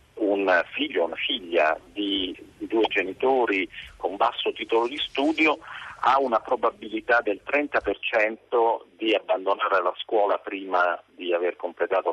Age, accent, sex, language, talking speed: 50-69, native, male, Italian, 135 wpm